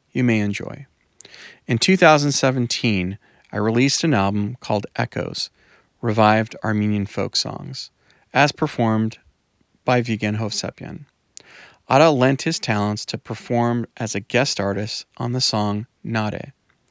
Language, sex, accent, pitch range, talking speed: English, male, American, 105-130 Hz, 120 wpm